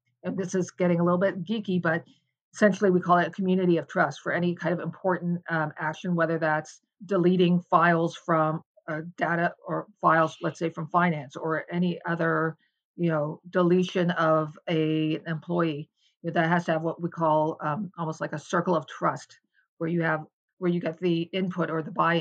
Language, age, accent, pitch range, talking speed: English, 40-59, American, 160-180 Hz, 190 wpm